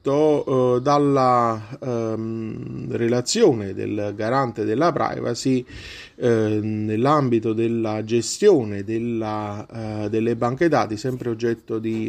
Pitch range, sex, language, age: 110-130 Hz, male, Italian, 30-49